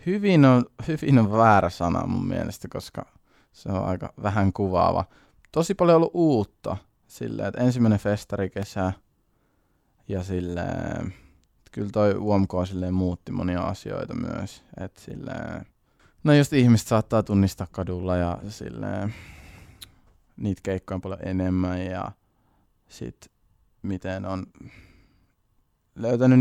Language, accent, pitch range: Finnish, native, 90-110 Hz